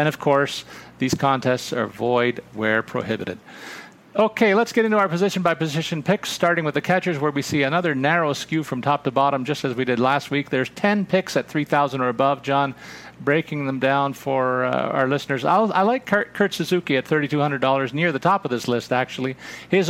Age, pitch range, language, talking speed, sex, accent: 40-59, 125-155 Hz, English, 200 wpm, male, American